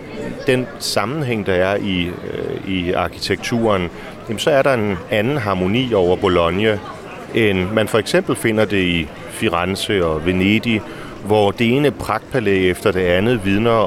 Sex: male